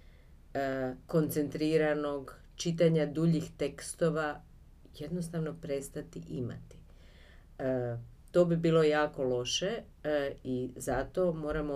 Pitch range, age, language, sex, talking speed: 135-170 Hz, 40-59, Croatian, female, 75 wpm